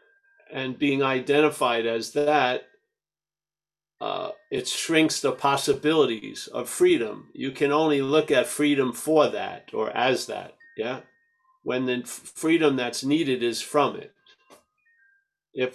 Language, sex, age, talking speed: English, male, 50-69, 125 wpm